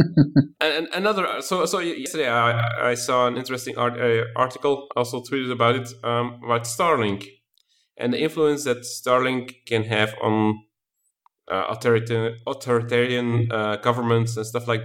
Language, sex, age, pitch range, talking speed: English, male, 30-49, 115-140 Hz, 145 wpm